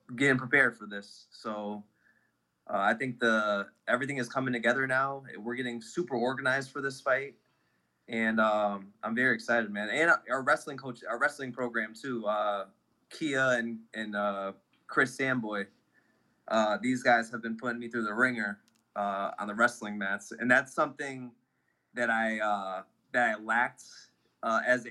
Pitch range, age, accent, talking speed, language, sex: 110-130 Hz, 20-39, American, 165 wpm, English, male